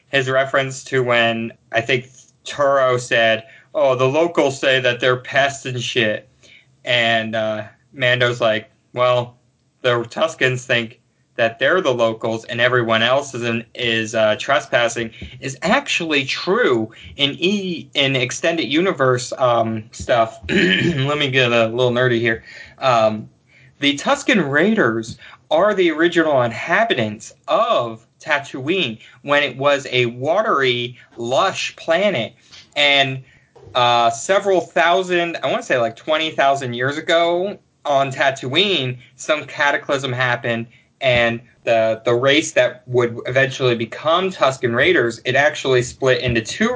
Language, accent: English, American